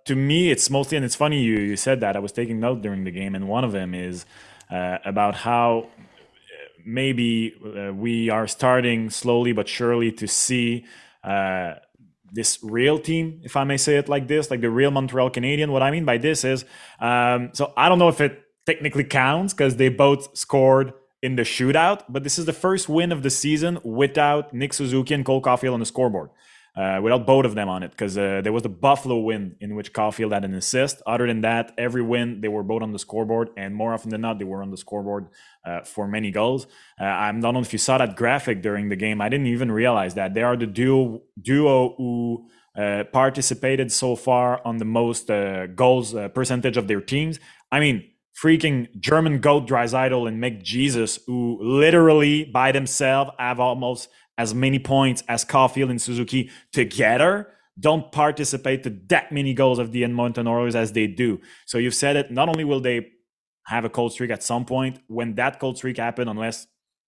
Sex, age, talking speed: male, 20-39, 205 wpm